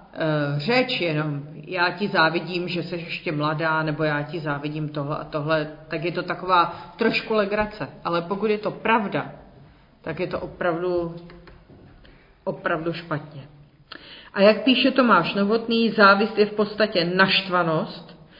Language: Czech